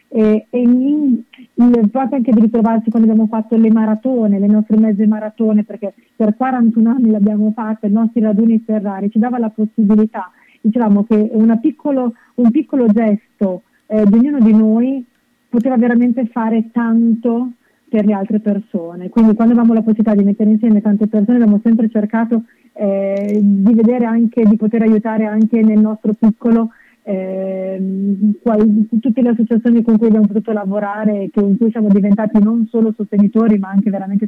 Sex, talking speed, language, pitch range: female, 165 wpm, Italian, 205-235 Hz